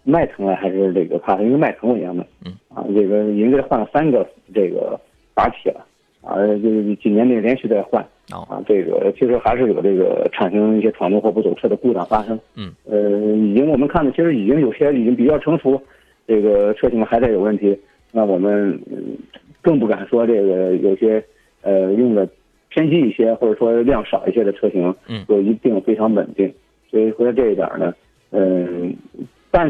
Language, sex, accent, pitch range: Chinese, male, native, 100-125 Hz